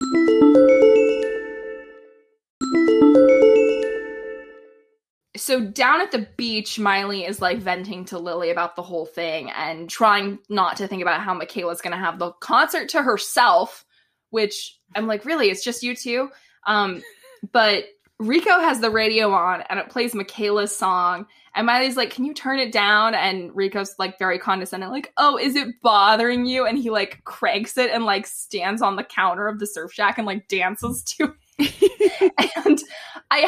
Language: English